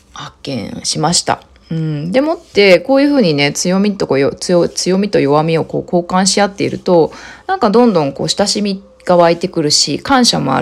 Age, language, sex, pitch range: 20-39, Japanese, female, 160-240 Hz